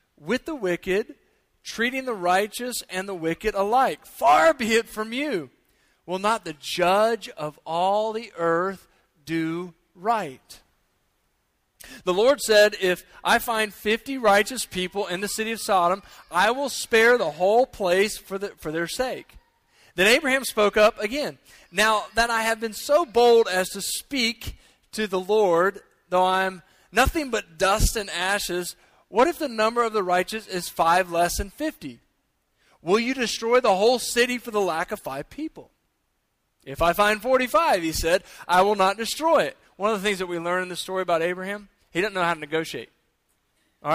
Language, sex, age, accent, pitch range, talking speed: English, male, 40-59, American, 180-230 Hz, 175 wpm